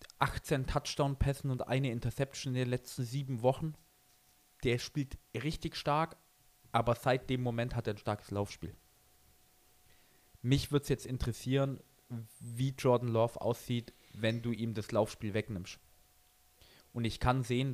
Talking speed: 140 wpm